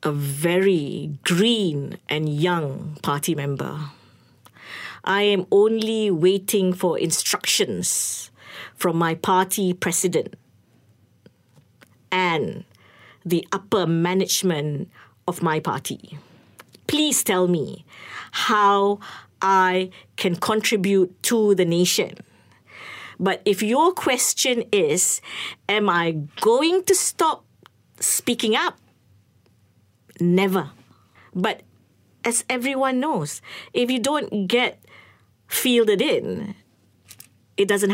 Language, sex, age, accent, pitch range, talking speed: English, female, 50-69, Malaysian, 150-235 Hz, 95 wpm